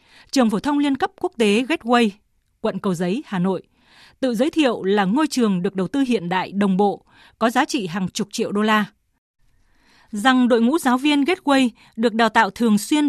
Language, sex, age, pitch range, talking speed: Vietnamese, female, 20-39, 205-275 Hz, 205 wpm